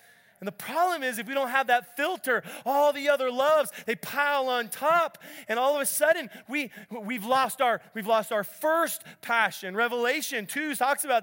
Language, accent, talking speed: English, American, 190 wpm